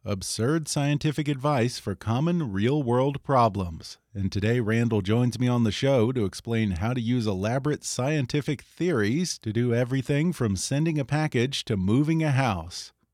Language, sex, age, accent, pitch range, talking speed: English, male, 40-59, American, 110-145 Hz, 155 wpm